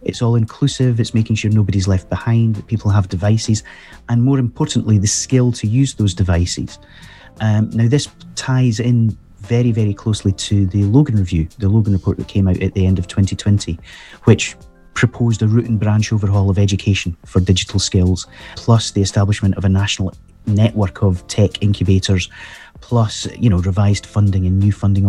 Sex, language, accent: male, English, British